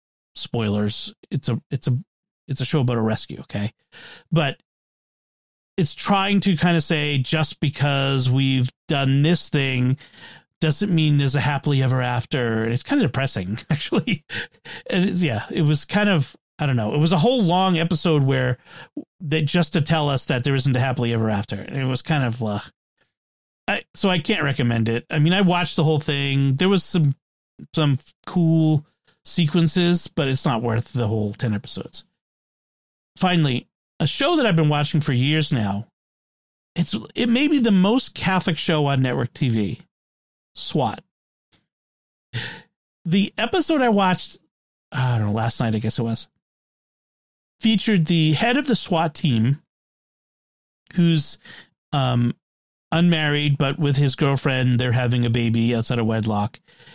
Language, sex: English, male